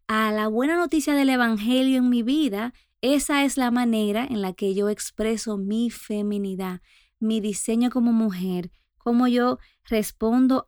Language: Spanish